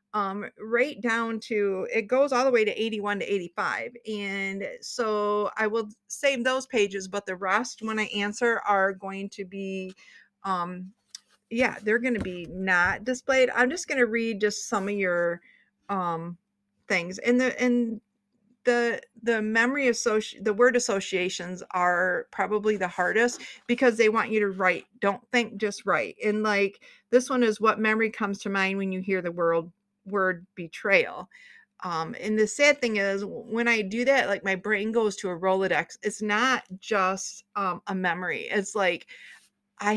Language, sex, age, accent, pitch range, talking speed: English, female, 40-59, American, 195-235 Hz, 175 wpm